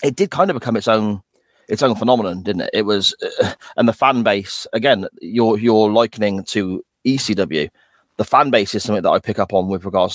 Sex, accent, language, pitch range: male, British, English, 95-115 Hz